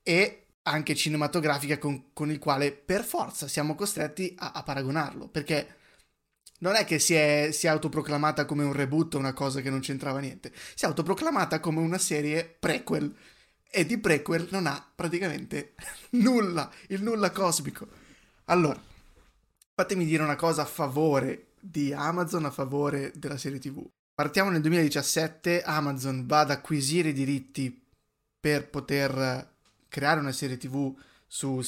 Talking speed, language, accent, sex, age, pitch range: 150 wpm, Italian, native, male, 20-39, 140-170 Hz